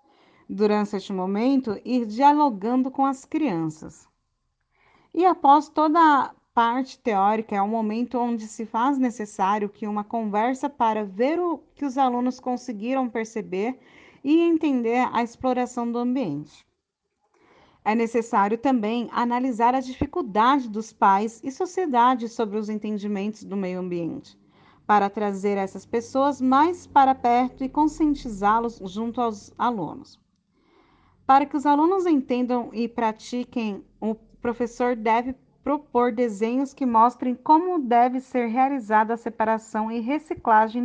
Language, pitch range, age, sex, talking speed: Portuguese, 220-270 Hz, 40-59, female, 130 wpm